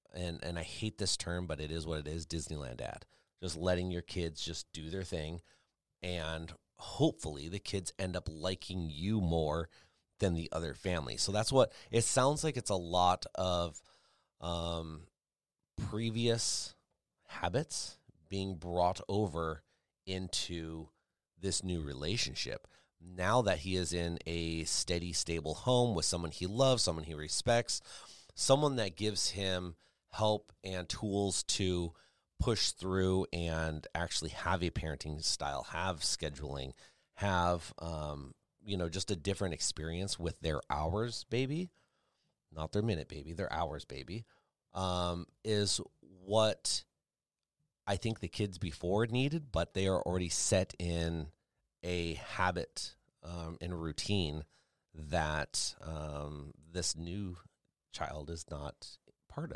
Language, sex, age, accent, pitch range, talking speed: English, male, 30-49, American, 80-100 Hz, 135 wpm